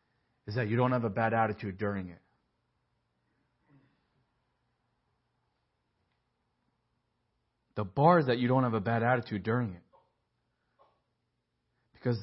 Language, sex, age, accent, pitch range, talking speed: English, male, 50-69, American, 110-155 Hz, 115 wpm